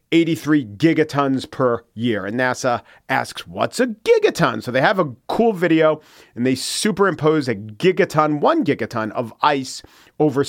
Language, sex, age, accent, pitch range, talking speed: English, male, 40-59, American, 120-165 Hz, 150 wpm